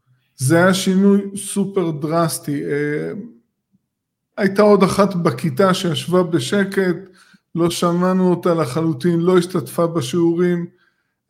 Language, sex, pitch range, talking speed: Hebrew, male, 155-195 Hz, 95 wpm